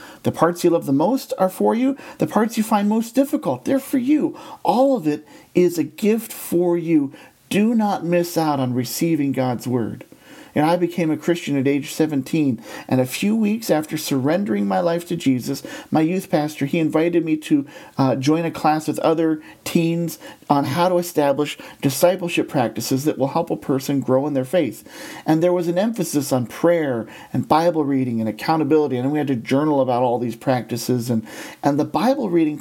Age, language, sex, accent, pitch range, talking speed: 40-59, English, male, American, 135-175 Hz, 200 wpm